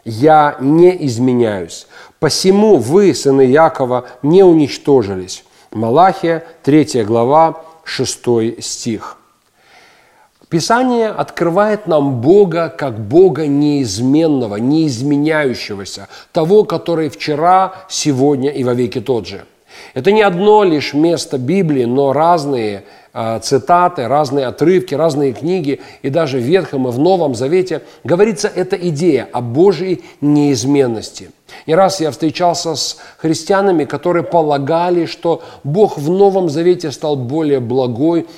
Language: Russian